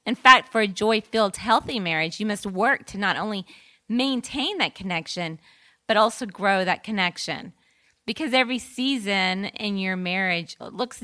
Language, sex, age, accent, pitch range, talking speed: English, female, 30-49, American, 175-215 Hz, 150 wpm